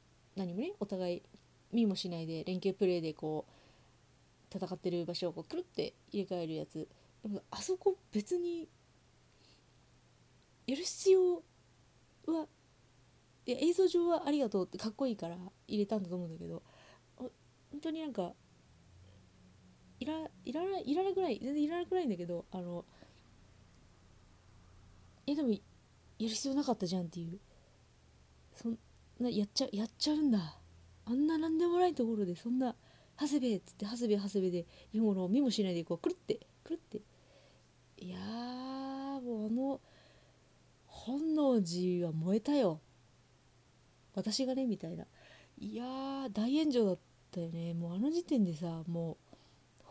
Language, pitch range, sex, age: Japanese, 170-270 Hz, female, 30-49